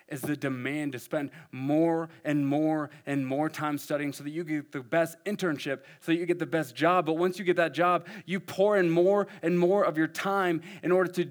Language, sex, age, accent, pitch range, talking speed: English, male, 30-49, American, 135-185 Hz, 230 wpm